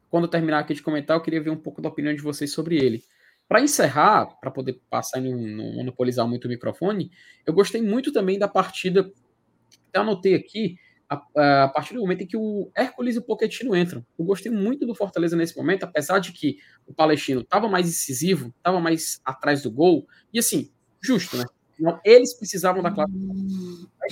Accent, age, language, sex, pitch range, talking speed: Brazilian, 20-39, Portuguese, male, 140-190 Hz, 195 wpm